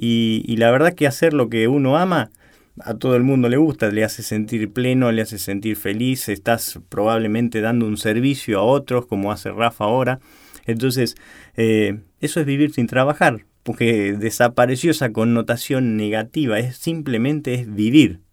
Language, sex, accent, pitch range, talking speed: Spanish, male, Argentinian, 105-130 Hz, 165 wpm